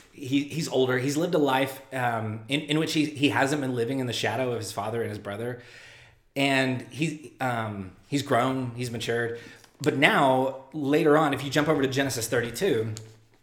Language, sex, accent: English, male, American